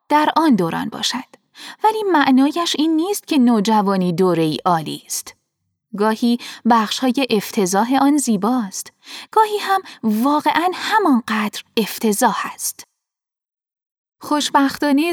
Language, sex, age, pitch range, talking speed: Persian, female, 10-29, 215-310 Hz, 100 wpm